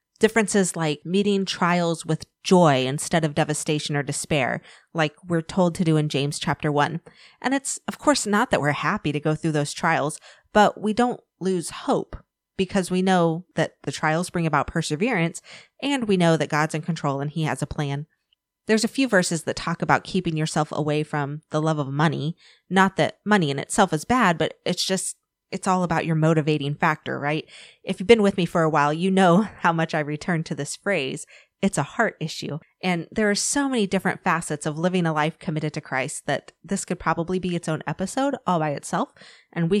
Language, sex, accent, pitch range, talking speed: English, female, American, 150-185 Hz, 210 wpm